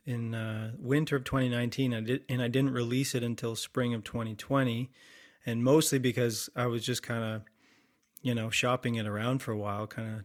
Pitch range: 110-125 Hz